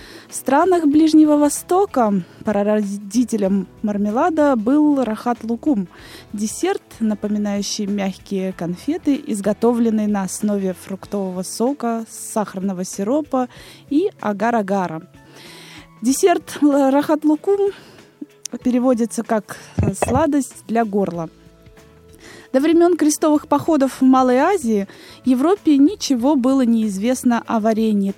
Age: 20-39